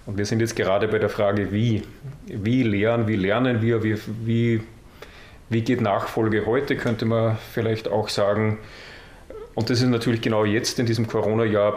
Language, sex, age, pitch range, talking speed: German, male, 40-59, 105-120 Hz, 170 wpm